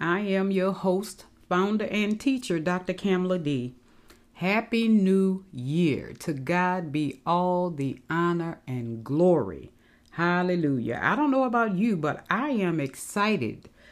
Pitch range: 160-210 Hz